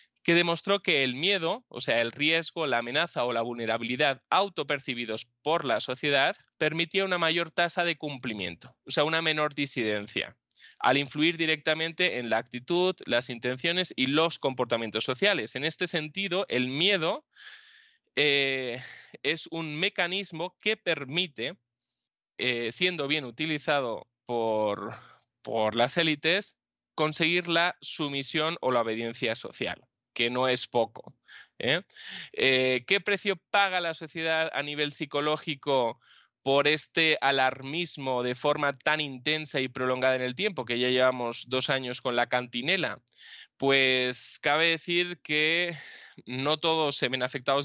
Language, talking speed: Spanish, 135 wpm